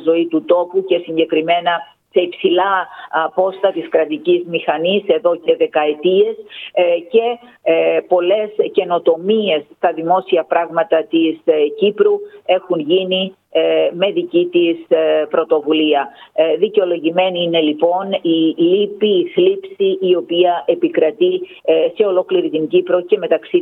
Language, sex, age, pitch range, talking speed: Greek, female, 50-69, 160-200 Hz, 110 wpm